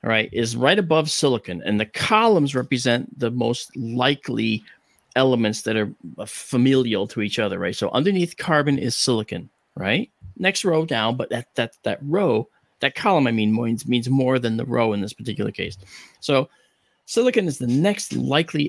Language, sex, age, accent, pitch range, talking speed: English, male, 40-59, American, 115-150 Hz, 175 wpm